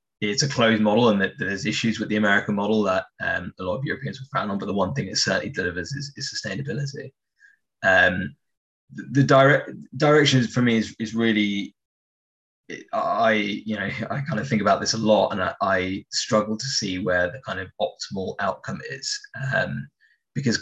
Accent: British